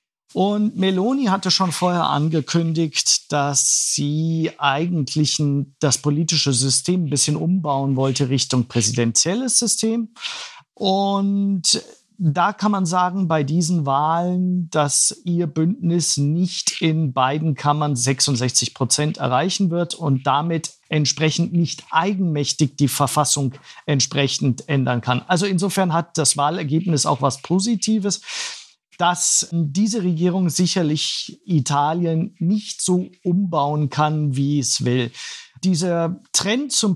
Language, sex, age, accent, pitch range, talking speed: German, male, 50-69, German, 145-185 Hz, 115 wpm